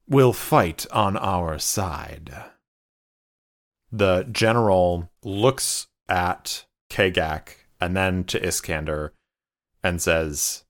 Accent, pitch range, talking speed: American, 90-120 Hz, 90 wpm